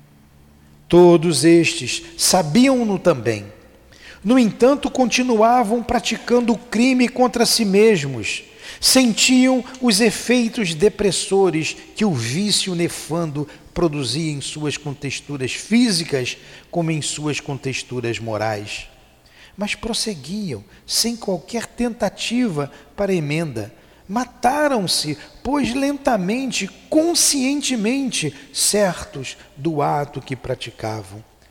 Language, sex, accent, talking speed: Portuguese, male, Brazilian, 90 wpm